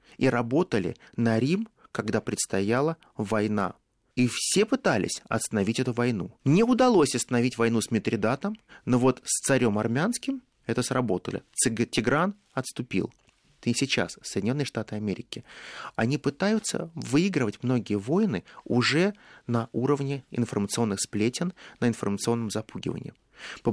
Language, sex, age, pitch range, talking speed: Russian, male, 30-49, 105-145 Hz, 120 wpm